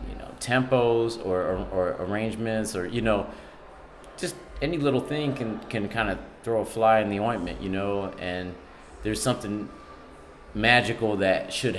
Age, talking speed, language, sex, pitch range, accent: 30-49, 165 wpm, English, male, 90-110 Hz, American